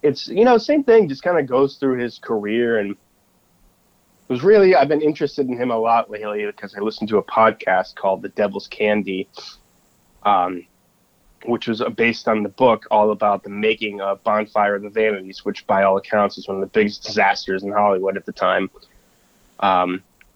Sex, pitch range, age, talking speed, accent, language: male, 105-130 Hz, 20-39, 195 wpm, American, English